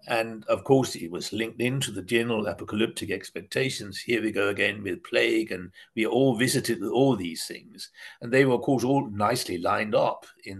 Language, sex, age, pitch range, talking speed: English, male, 60-79, 115-180 Hz, 195 wpm